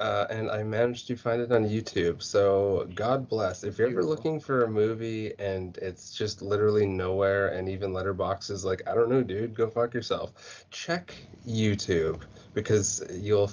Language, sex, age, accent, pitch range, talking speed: English, male, 20-39, American, 100-120 Hz, 175 wpm